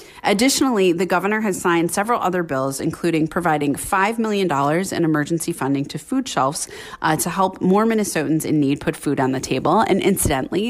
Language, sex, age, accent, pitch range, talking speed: English, female, 30-49, American, 150-195 Hz, 180 wpm